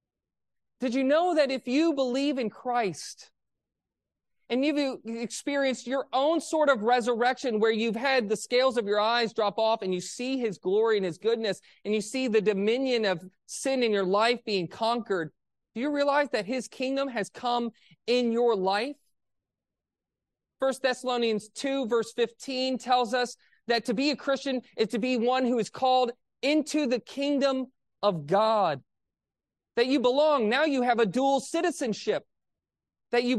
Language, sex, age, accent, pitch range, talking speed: English, male, 30-49, American, 215-265 Hz, 165 wpm